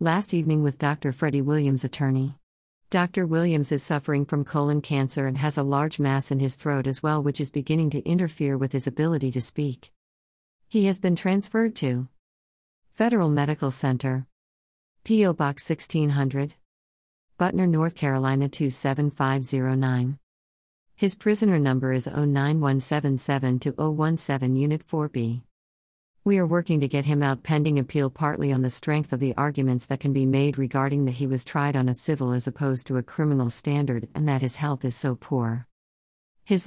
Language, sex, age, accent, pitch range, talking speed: English, female, 50-69, American, 130-155 Hz, 160 wpm